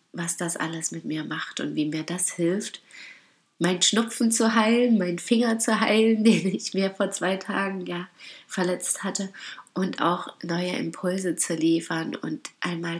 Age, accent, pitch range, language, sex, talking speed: 30-49, German, 170-205 Hz, German, female, 165 wpm